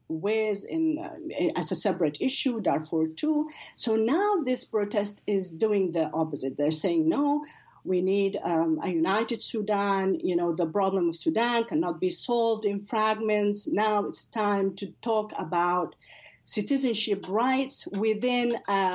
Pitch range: 185-245 Hz